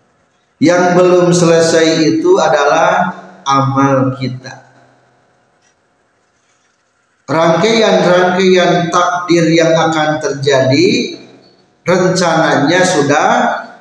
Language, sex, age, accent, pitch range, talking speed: Indonesian, male, 50-69, native, 150-195 Hz, 60 wpm